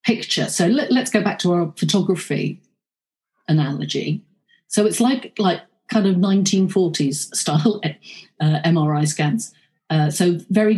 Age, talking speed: 40-59, 130 wpm